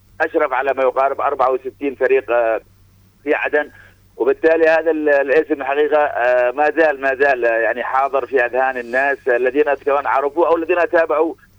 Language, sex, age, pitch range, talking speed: Arabic, male, 50-69, 125-160 Hz, 140 wpm